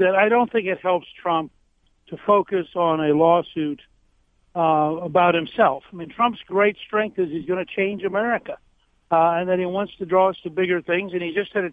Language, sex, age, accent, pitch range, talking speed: English, male, 60-79, American, 170-210 Hz, 215 wpm